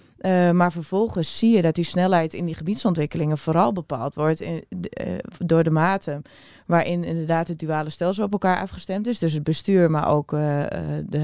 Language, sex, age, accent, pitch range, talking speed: Dutch, female, 20-39, Dutch, 165-200 Hz, 190 wpm